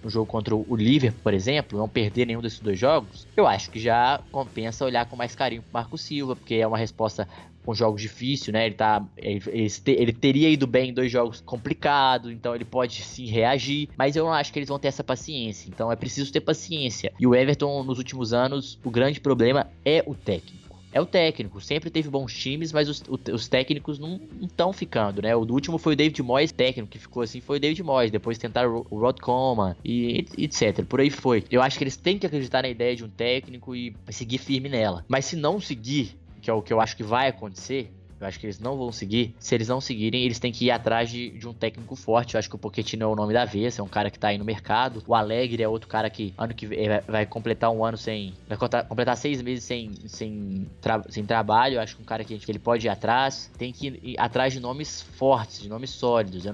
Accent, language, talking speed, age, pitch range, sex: Brazilian, Portuguese, 245 wpm, 20-39, 110-130 Hz, male